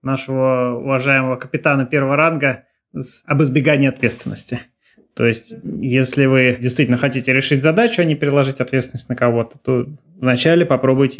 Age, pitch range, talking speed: 20-39, 125-150 Hz, 135 wpm